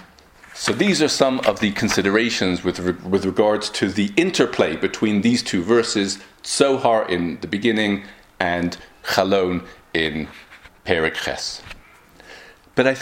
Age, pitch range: 40-59, 95-135 Hz